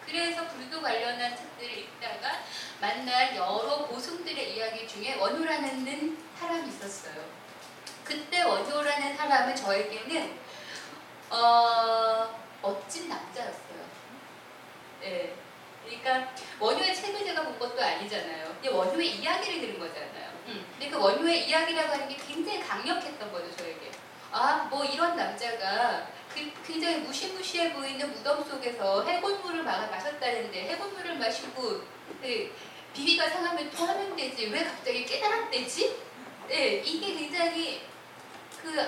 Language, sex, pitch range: Korean, female, 260-355 Hz